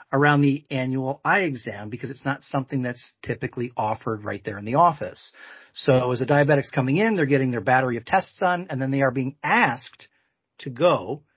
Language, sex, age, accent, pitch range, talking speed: English, male, 40-59, American, 125-155 Hz, 200 wpm